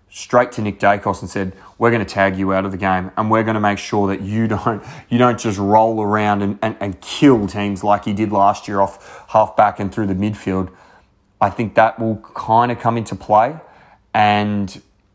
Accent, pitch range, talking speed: Australian, 100-120 Hz, 220 wpm